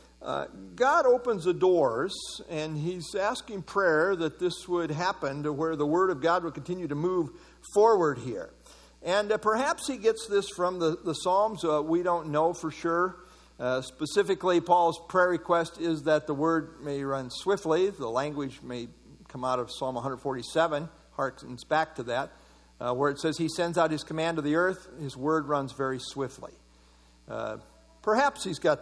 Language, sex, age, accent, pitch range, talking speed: English, male, 50-69, American, 125-180 Hz, 180 wpm